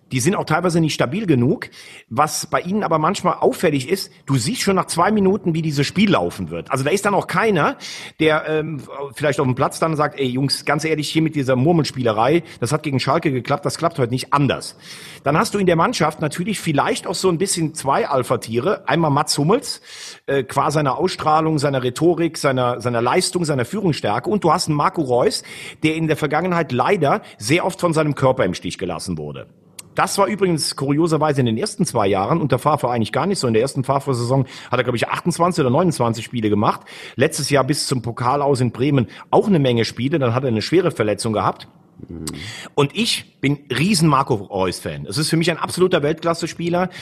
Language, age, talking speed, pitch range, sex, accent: German, 40-59, 210 wpm, 130-170 Hz, male, German